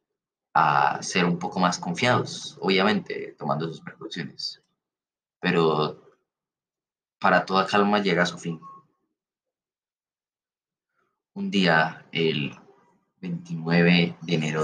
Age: 30-49